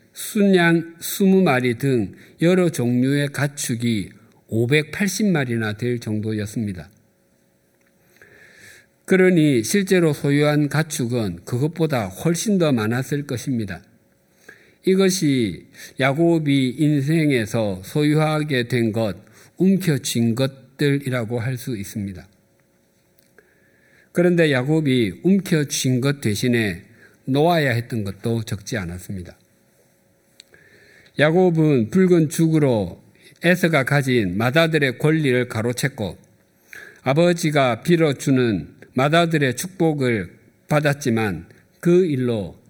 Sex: male